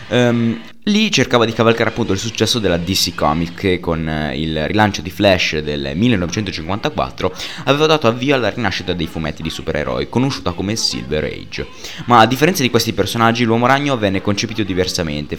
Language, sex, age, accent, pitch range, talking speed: Italian, male, 20-39, native, 85-120 Hz, 170 wpm